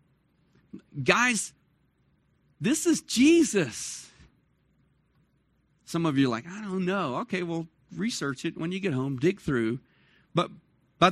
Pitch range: 150-215 Hz